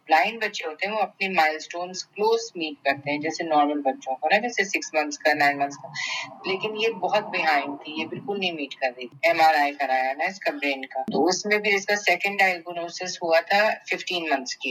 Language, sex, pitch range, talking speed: Urdu, female, 150-190 Hz, 90 wpm